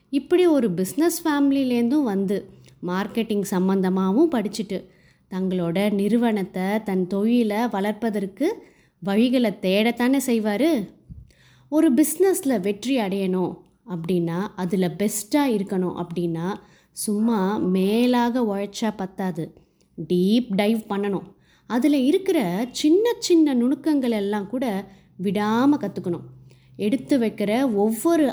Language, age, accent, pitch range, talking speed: Tamil, 20-39, native, 190-265 Hz, 95 wpm